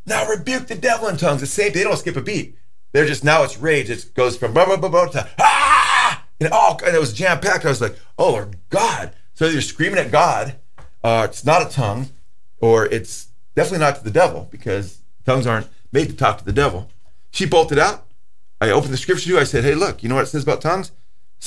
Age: 40-59